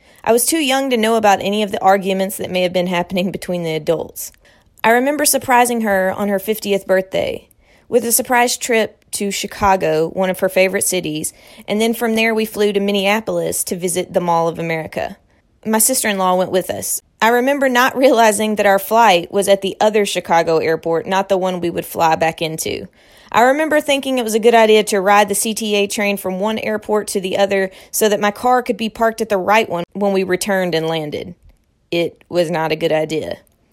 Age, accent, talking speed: 30-49, American, 210 wpm